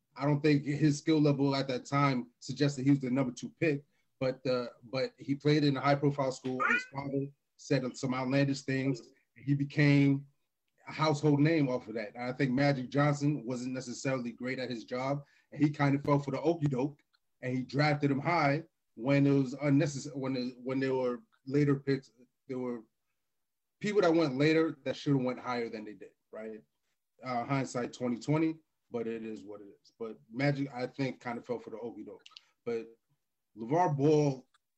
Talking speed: 195 wpm